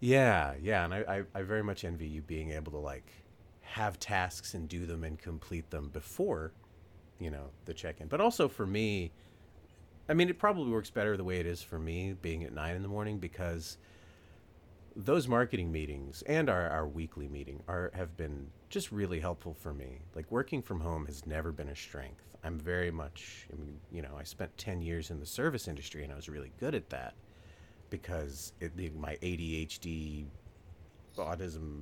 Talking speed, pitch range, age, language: 190 wpm, 80-105 Hz, 30-49, English